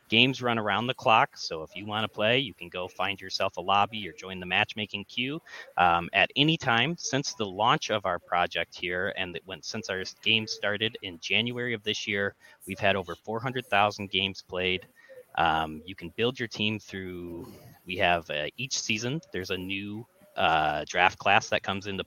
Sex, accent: male, American